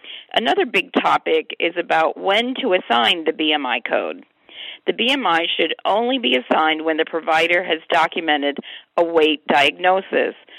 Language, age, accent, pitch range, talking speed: English, 40-59, American, 155-195 Hz, 140 wpm